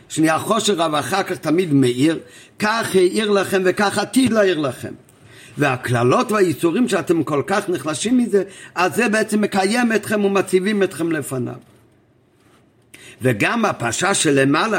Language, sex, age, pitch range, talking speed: Hebrew, male, 50-69, 135-185 Hz, 125 wpm